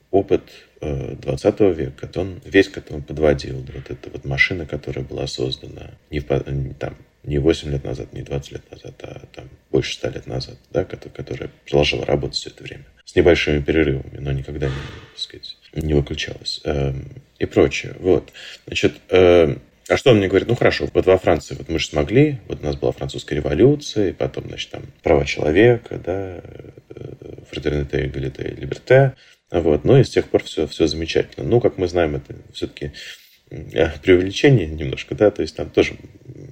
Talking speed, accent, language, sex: 180 wpm, native, Russian, male